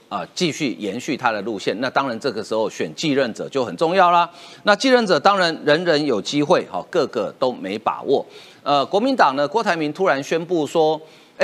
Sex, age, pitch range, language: male, 50-69, 140-190 Hz, Chinese